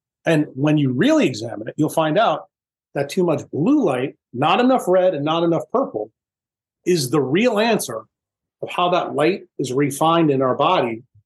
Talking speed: 180 wpm